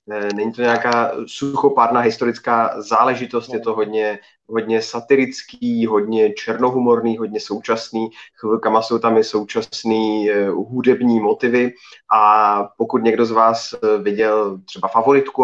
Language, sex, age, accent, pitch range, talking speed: Czech, male, 20-39, native, 105-120 Hz, 115 wpm